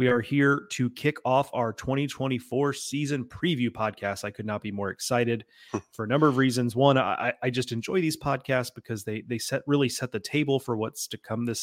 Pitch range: 115-145 Hz